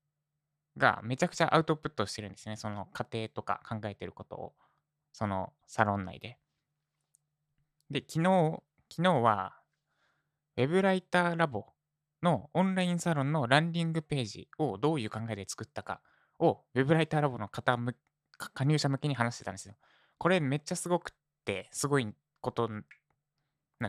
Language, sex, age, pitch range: Japanese, male, 20-39, 110-155 Hz